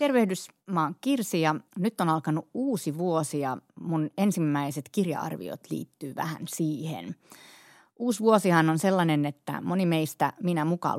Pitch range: 150-180 Hz